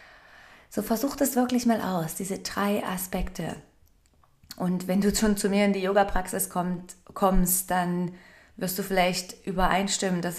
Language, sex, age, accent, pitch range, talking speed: German, female, 20-39, German, 170-205 Hz, 145 wpm